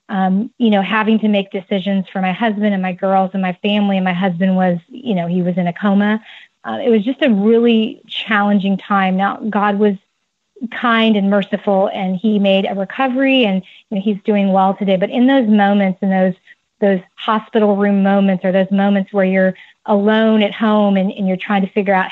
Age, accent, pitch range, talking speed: 30-49, American, 190-225 Hz, 210 wpm